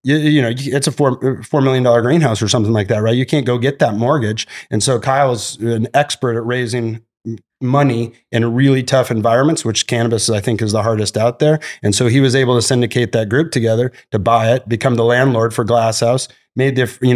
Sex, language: male, English